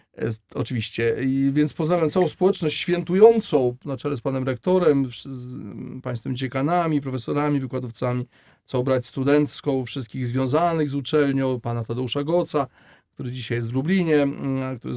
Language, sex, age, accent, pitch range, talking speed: Polish, male, 40-59, native, 130-155 Hz, 135 wpm